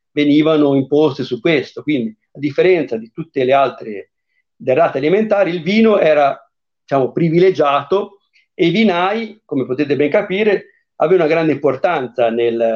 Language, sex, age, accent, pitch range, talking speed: Italian, male, 50-69, native, 125-175 Hz, 140 wpm